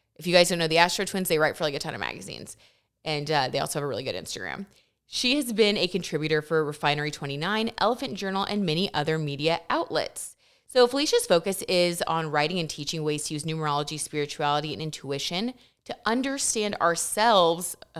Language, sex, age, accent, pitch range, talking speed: English, female, 20-39, American, 155-215 Hz, 195 wpm